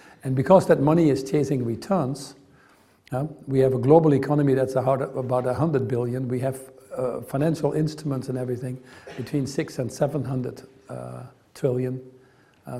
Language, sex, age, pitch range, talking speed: English, male, 60-79, 130-145 Hz, 155 wpm